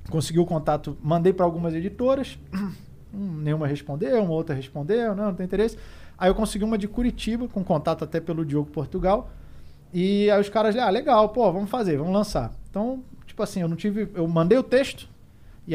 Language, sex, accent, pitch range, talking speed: Portuguese, male, Brazilian, 145-210 Hz, 195 wpm